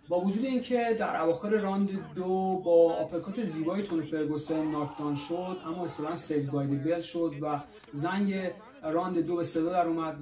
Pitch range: 155-190 Hz